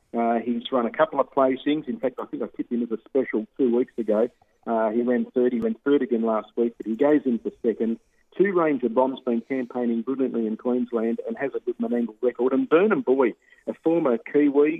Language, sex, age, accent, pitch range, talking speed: English, male, 40-59, Australian, 115-140 Hz, 225 wpm